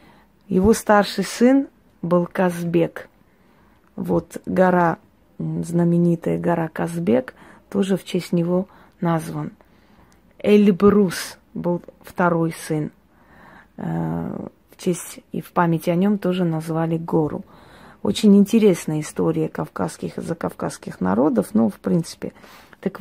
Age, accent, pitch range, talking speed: 30-49, native, 165-195 Hz, 105 wpm